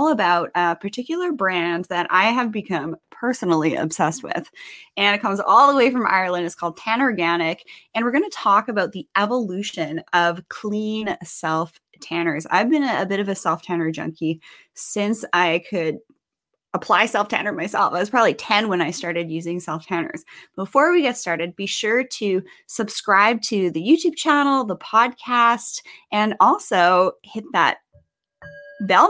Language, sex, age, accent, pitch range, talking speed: English, female, 20-39, American, 175-240 Hz, 155 wpm